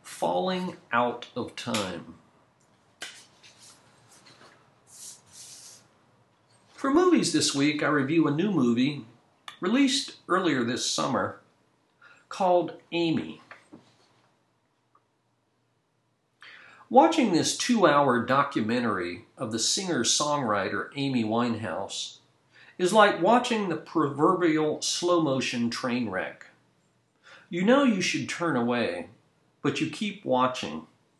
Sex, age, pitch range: male, 50-69, 125-200 Hz